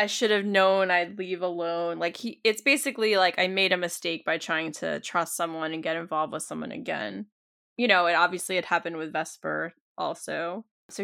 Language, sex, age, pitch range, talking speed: English, female, 10-29, 170-235 Hz, 200 wpm